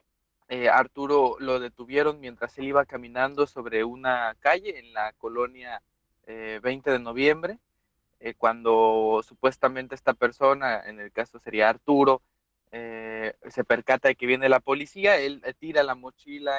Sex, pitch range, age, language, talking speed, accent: male, 115-140 Hz, 20-39, Spanish, 150 wpm, Mexican